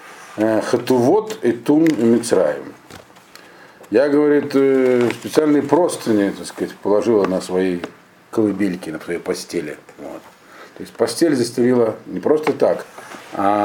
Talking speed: 115 wpm